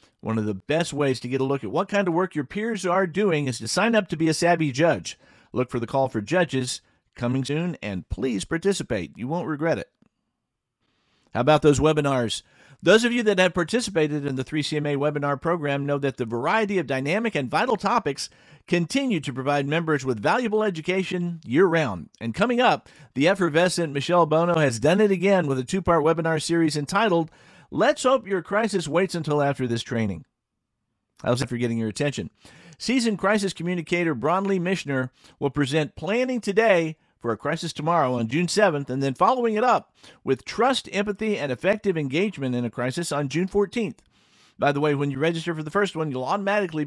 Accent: American